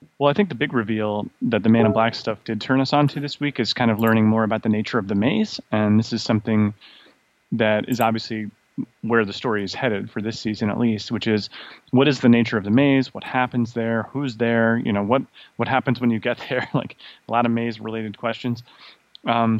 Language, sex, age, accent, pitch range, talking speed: English, male, 30-49, American, 110-125 Hz, 240 wpm